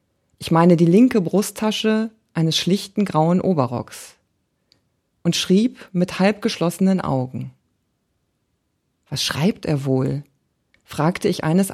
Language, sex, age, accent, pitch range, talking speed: German, female, 40-59, German, 150-205 Hz, 110 wpm